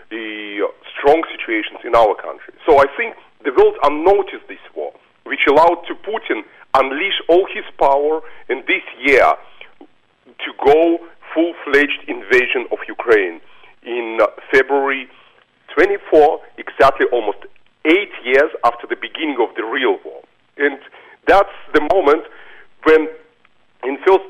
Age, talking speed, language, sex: 40-59, 135 wpm, English, male